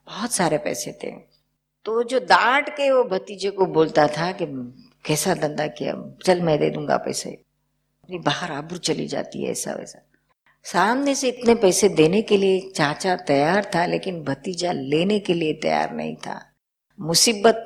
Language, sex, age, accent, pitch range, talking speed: Hindi, female, 50-69, native, 155-190 Hz, 165 wpm